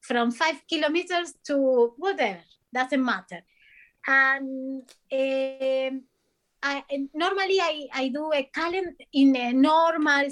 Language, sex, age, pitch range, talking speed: English, female, 20-39, 250-315 Hz, 115 wpm